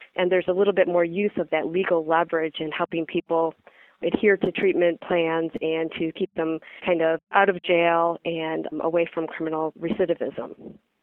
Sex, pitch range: female, 165-195 Hz